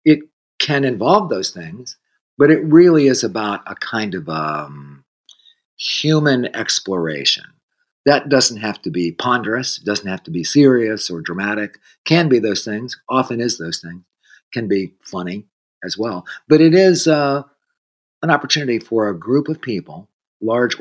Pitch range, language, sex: 95-140 Hz, English, male